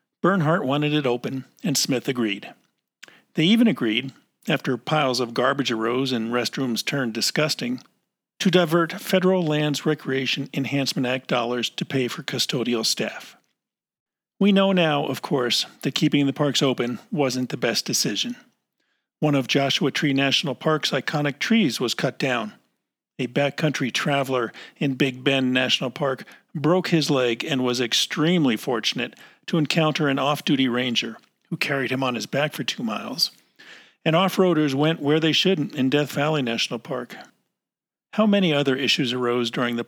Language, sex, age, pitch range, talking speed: English, male, 50-69, 125-160 Hz, 155 wpm